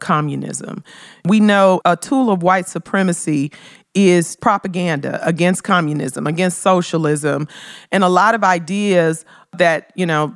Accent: American